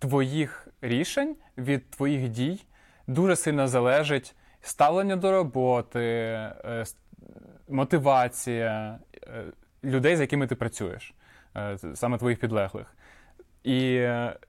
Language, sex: Ukrainian, male